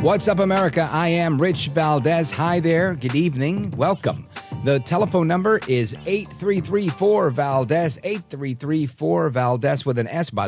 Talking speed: 125 wpm